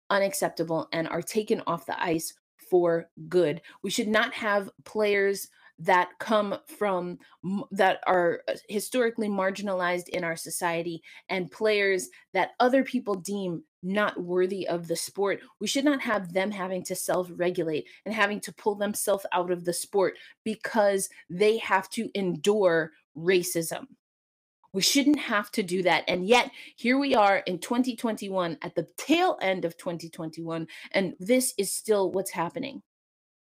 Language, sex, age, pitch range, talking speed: English, female, 20-39, 175-210 Hz, 150 wpm